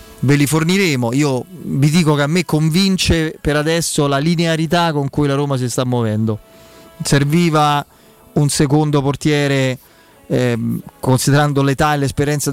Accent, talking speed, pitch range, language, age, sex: native, 145 wpm, 130-155 Hz, Italian, 20-39, male